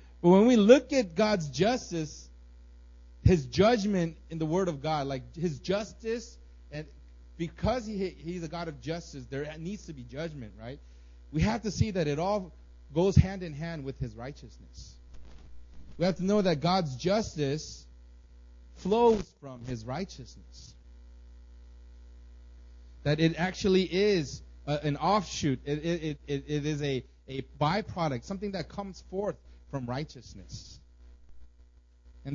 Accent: American